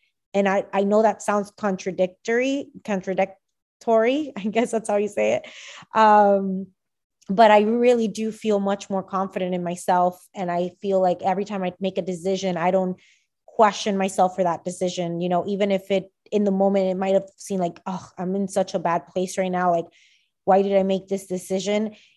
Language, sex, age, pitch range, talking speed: English, female, 20-39, 185-210 Hz, 195 wpm